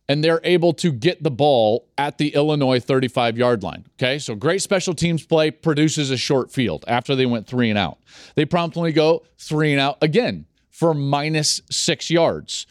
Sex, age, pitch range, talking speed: male, 40-59, 120-160 Hz, 165 wpm